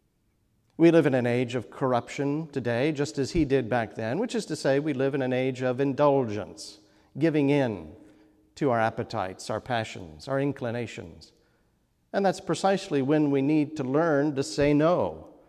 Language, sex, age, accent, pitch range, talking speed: English, male, 50-69, American, 110-145 Hz, 175 wpm